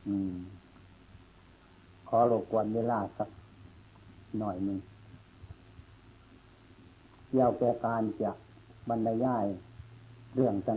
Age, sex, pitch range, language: 60-79, male, 95-125 Hz, Thai